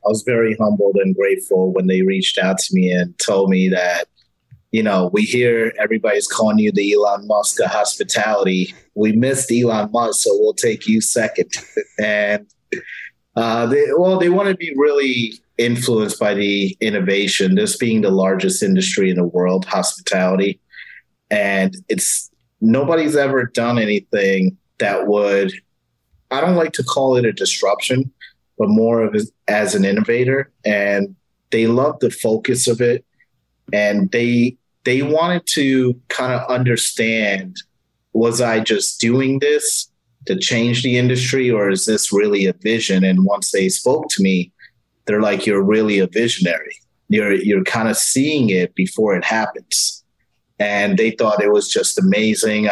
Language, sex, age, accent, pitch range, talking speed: English, male, 30-49, American, 100-130 Hz, 160 wpm